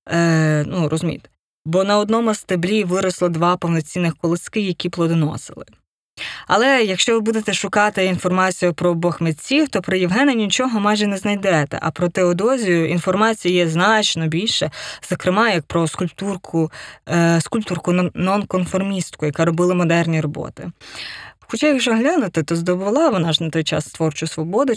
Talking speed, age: 140 wpm, 20-39